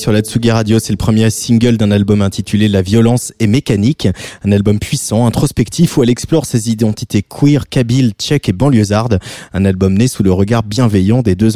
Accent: French